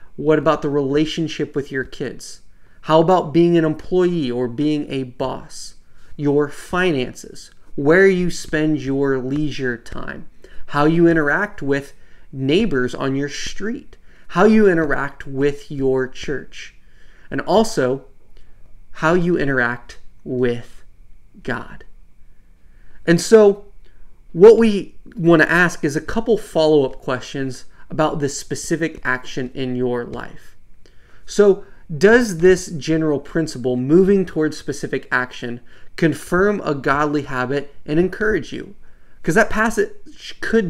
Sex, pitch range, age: male, 135-180 Hz, 30-49